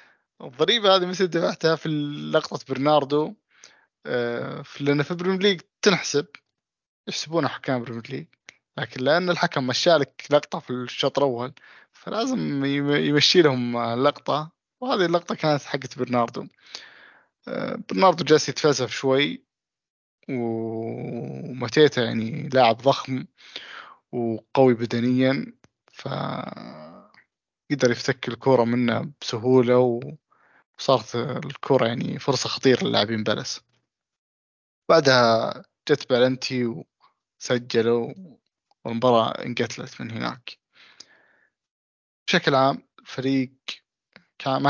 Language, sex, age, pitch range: Arabic, male, 20-39, 120-145 Hz